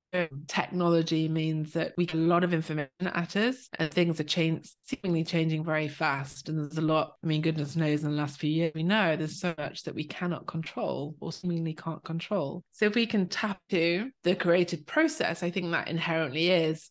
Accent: British